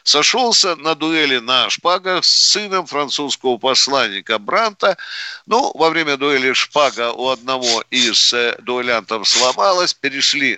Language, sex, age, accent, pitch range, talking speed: Russian, male, 50-69, native, 130-185 Hz, 120 wpm